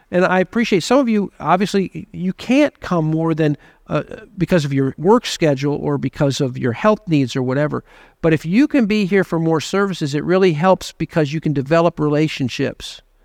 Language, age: English, 50-69